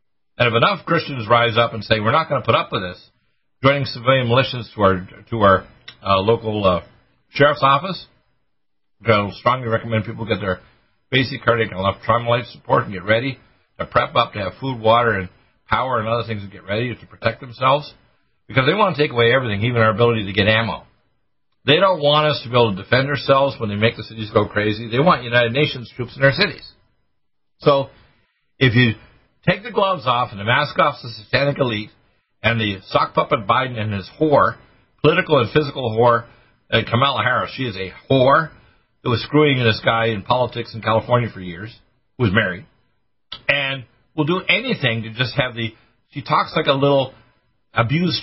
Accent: American